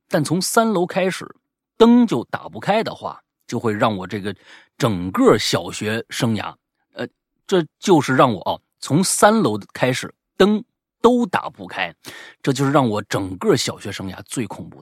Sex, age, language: male, 30-49, Chinese